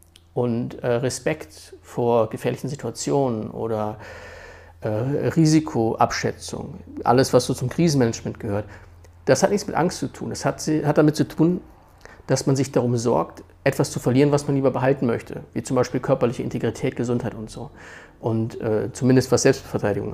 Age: 50-69